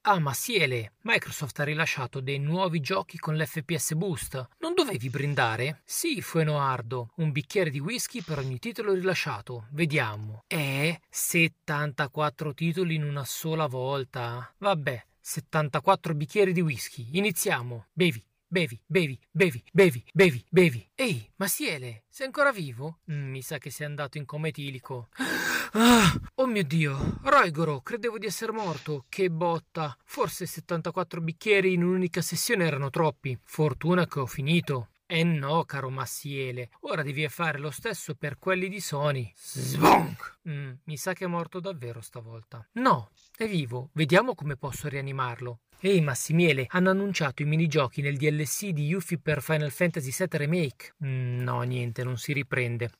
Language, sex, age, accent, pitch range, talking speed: Italian, male, 40-59, native, 140-185 Hz, 150 wpm